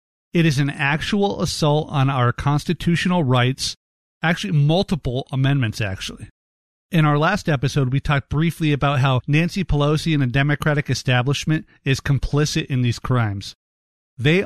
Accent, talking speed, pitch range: American, 140 wpm, 125-160 Hz